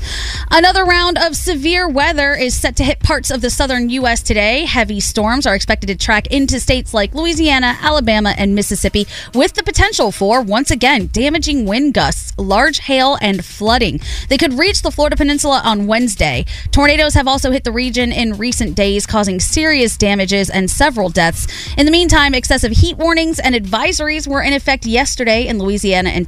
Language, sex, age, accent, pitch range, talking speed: English, female, 20-39, American, 200-285 Hz, 180 wpm